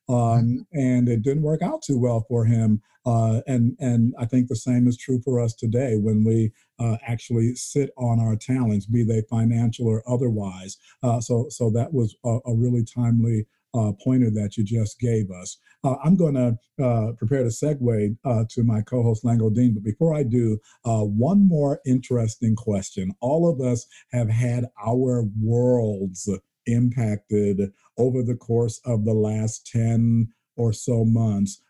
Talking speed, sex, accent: 175 wpm, male, American